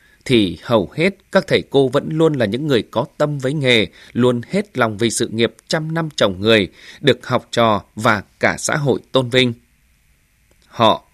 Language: Vietnamese